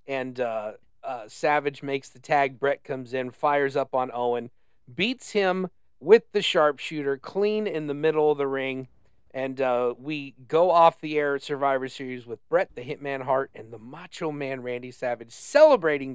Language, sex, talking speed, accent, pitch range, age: English, male, 180 wpm, American, 130-165 Hz, 40-59